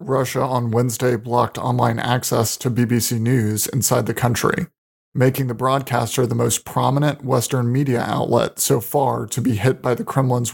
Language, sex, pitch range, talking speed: English, male, 120-140 Hz, 165 wpm